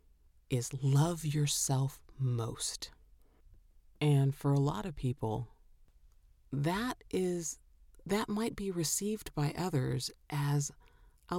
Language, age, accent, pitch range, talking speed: English, 40-59, American, 125-160 Hz, 105 wpm